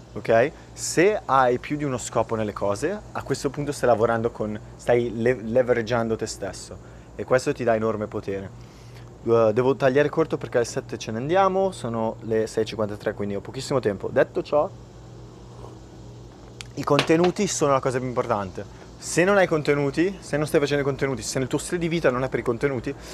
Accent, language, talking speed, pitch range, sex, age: native, Italian, 180 wpm, 115-145 Hz, male, 30-49